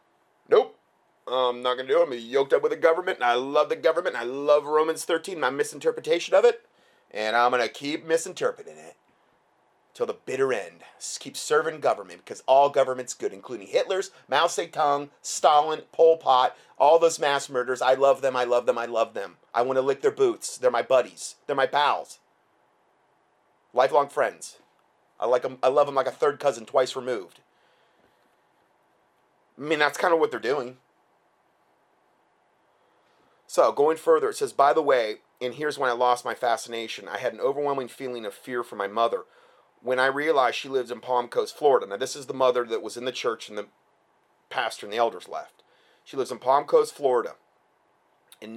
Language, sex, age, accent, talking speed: English, male, 30-49, American, 195 wpm